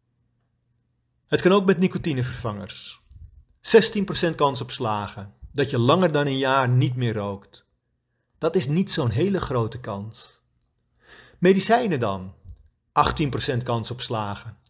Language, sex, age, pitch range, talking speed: Dutch, male, 40-59, 120-165 Hz, 125 wpm